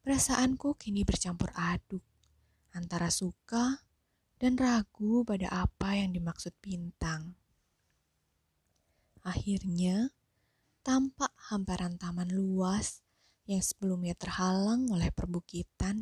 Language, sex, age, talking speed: Indonesian, female, 20-39, 85 wpm